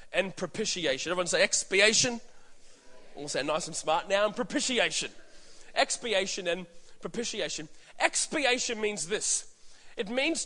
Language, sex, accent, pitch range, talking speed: English, male, Australian, 195-255 Hz, 120 wpm